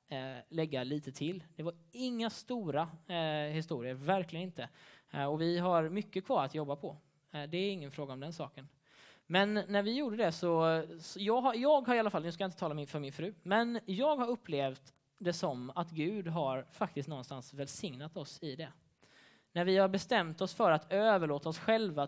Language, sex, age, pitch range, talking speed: Swedish, male, 20-39, 140-180 Hz, 195 wpm